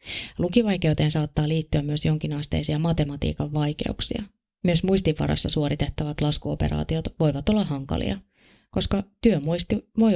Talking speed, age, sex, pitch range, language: 100 wpm, 30-49, female, 145-175 Hz, Finnish